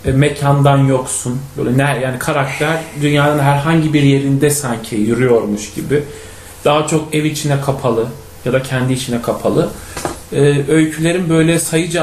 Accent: native